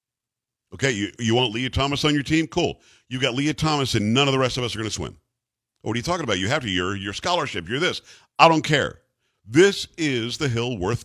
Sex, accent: male, American